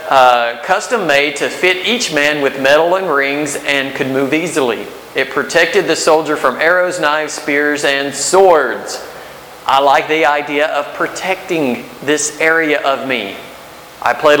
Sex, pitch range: male, 125-150 Hz